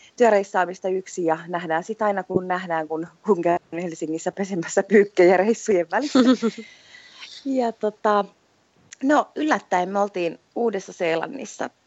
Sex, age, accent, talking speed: female, 30-49, native, 115 wpm